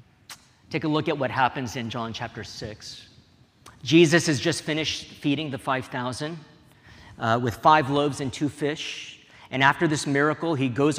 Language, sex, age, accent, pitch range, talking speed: English, male, 40-59, American, 115-155 Hz, 160 wpm